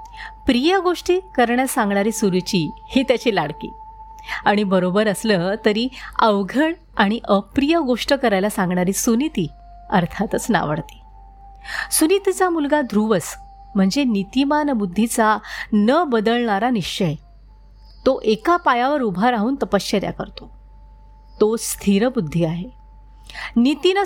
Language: Marathi